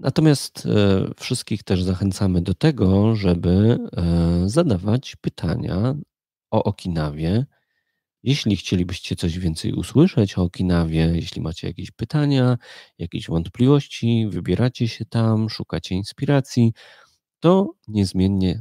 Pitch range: 90-120 Hz